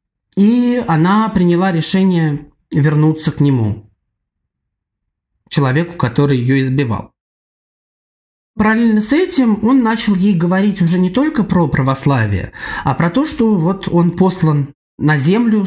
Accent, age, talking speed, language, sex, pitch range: native, 20-39, 120 wpm, Russian, male, 130-175 Hz